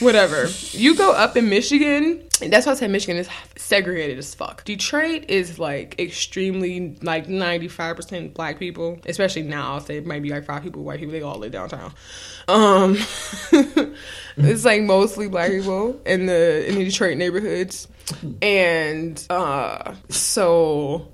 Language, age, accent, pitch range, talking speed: English, 20-39, American, 170-215 Hz, 155 wpm